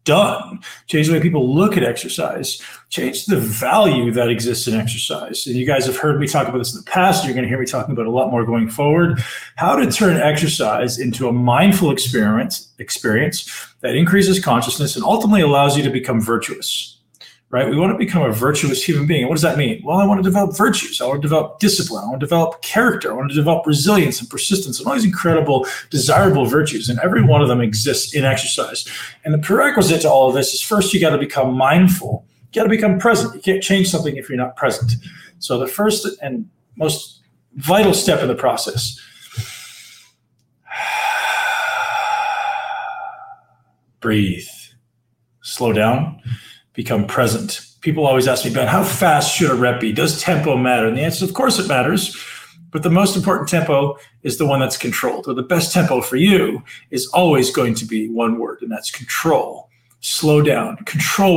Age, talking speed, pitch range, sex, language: 40-59, 200 wpm, 125-185 Hz, male, English